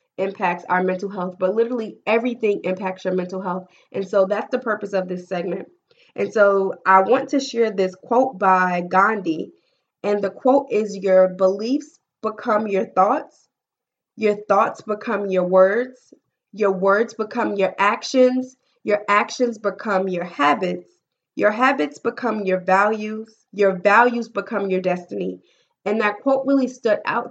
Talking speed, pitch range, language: 150 wpm, 185-235 Hz, English